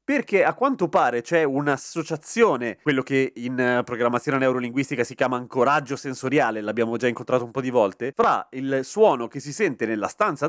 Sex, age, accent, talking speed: male, 30-49, native, 170 wpm